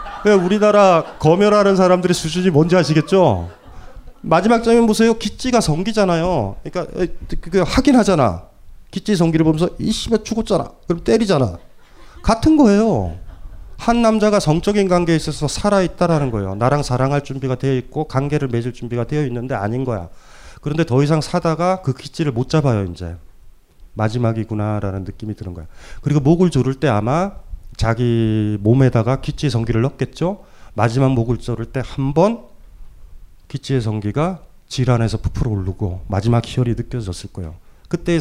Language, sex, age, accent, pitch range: Korean, male, 30-49, native, 105-165 Hz